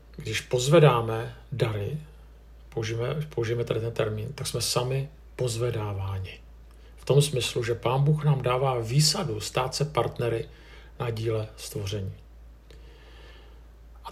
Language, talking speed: Czech, 120 wpm